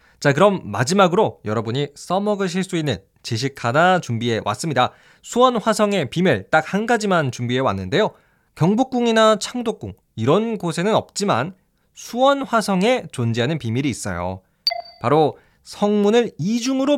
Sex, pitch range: male, 130-210 Hz